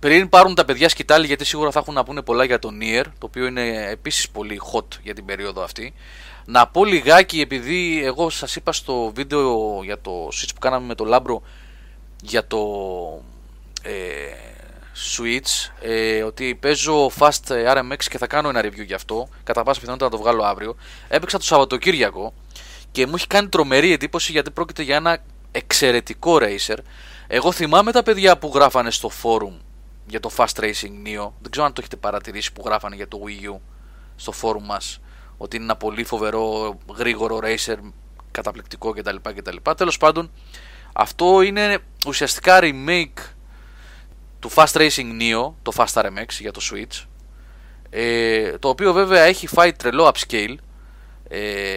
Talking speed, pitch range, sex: 160 wpm, 105-155 Hz, male